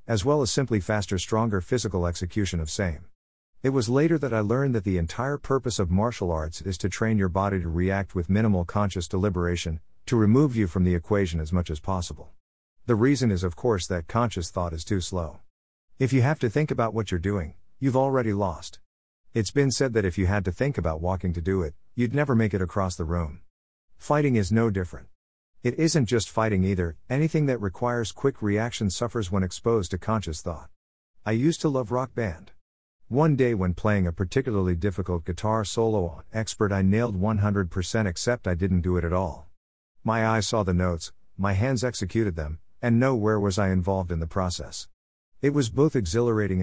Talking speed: 200 wpm